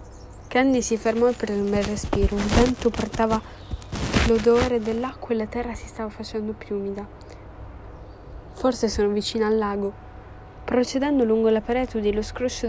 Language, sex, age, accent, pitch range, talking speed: Italian, female, 10-29, native, 210-250 Hz, 150 wpm